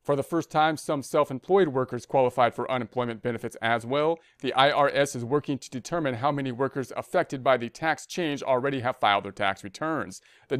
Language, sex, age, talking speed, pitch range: English, male, 40-59, 195 wpm, 125-145 Hz